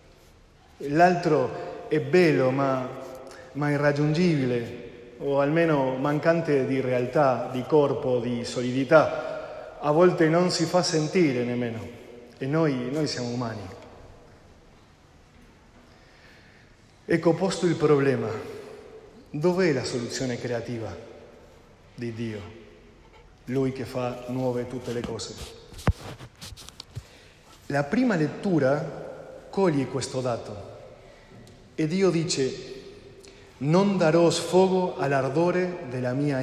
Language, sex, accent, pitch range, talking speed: Italian, male, Argentinian, 125-170 Hz, 95 wpm